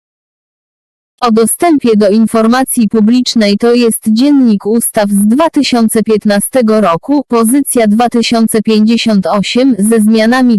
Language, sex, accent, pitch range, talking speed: Polish, female, native, 210-245 Hz, 90 wpm